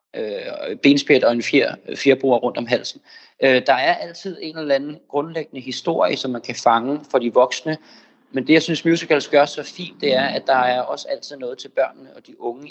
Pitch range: 125-150 Hz